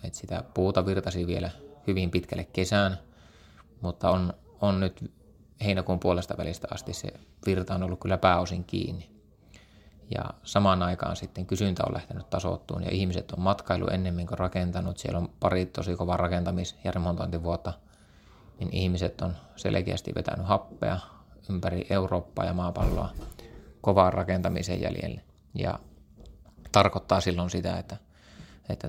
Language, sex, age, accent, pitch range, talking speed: Finnish, male, 30-49, native, 90-95 Hz, 135 wpm